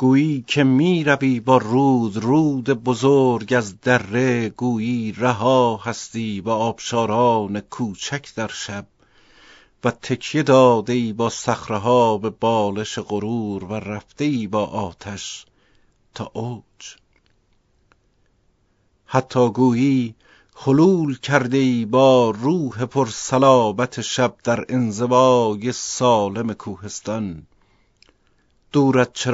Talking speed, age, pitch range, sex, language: 90 wpm, 50-69, 105-125 Hz, male, Persian